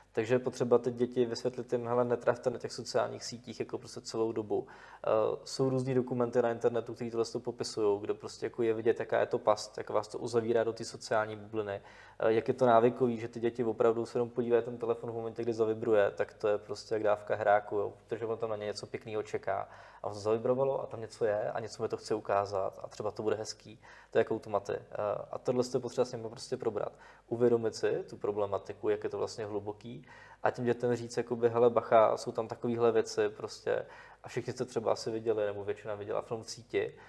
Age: 20-39